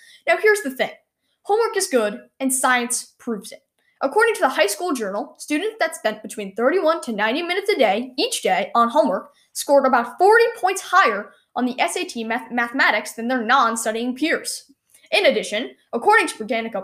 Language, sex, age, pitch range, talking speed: English, female, 10-29, 230-335 Hz, 175 wpm